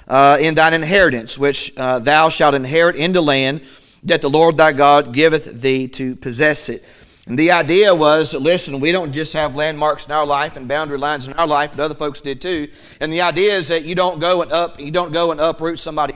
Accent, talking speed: American, 230 wpm